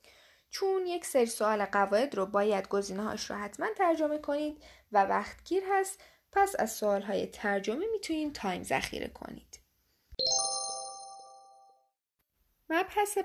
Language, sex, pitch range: Persian, female, 200-295 Hz